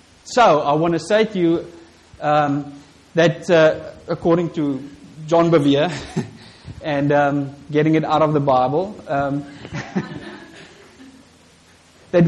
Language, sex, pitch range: English, male, 115-165 Hz